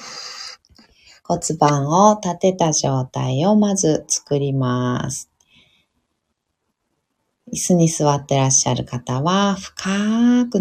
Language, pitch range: Japanese, 140-195 Hz